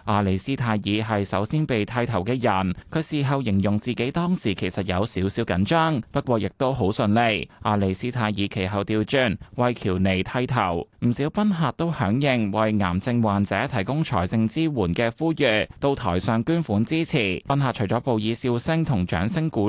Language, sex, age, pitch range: Chinese, male, 20-39, 100-135 Hz